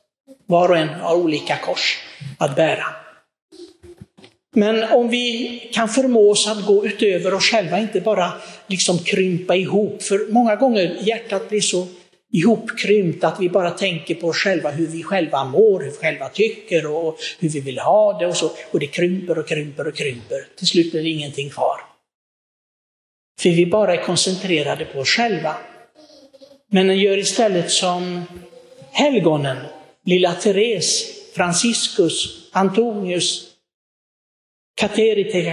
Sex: male